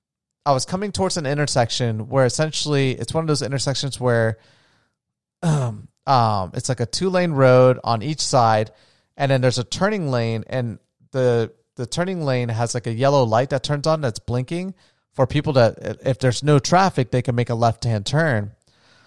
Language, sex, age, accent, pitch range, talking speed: English, male, 30-49, American, 120-160 Hz, 190 wpm